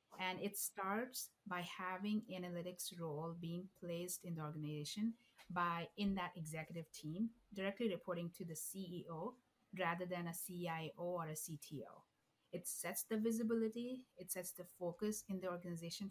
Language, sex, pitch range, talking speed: English, female, 160-195 Hz, 150 wpm